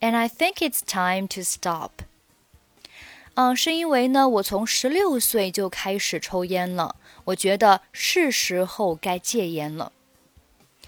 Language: Chinese